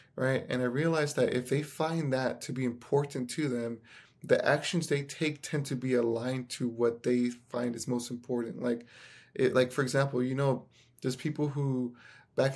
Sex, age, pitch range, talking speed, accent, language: male, 20-39, 125-145 Hz, 190 wpm, American, English